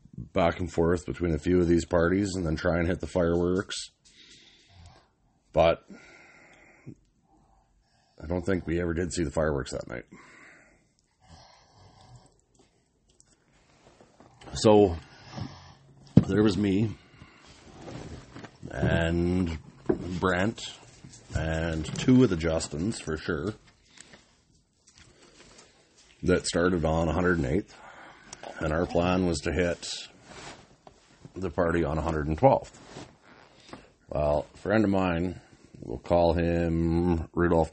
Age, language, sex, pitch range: 40-59, English, male, 85-95 Hz